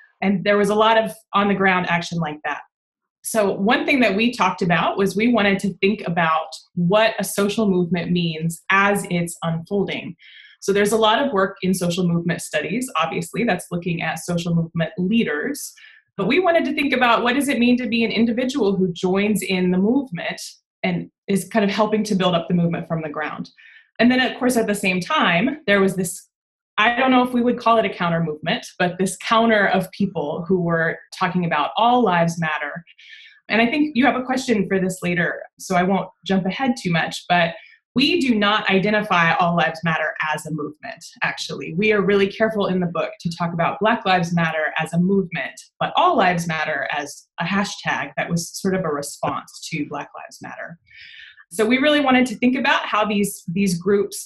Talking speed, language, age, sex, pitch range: 205 wpm, English, 20-39, female, 170-225 Hz